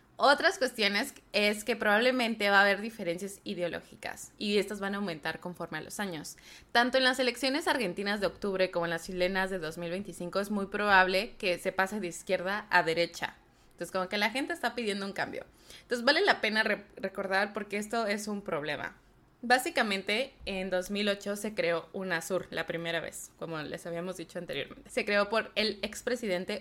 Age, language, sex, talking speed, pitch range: 20-39, English, female, 185 wpm, 185-240 Hz